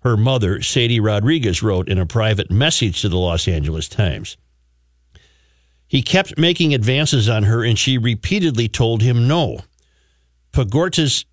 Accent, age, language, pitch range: American, 60-79, English, 85-130 Hz